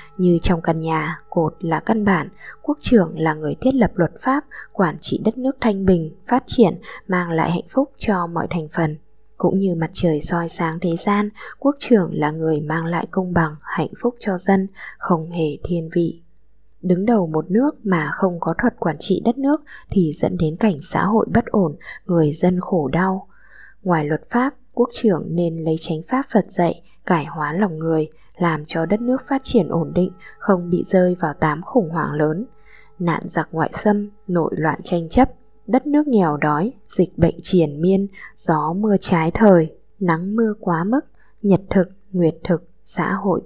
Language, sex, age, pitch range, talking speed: Vietnamese, female, 20-39, 165-215 Hz, 195 wpm